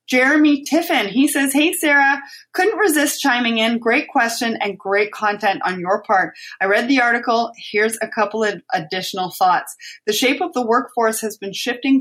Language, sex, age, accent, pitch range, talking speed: English, female, 30-49, American, 190-245 Hz, 180 wpm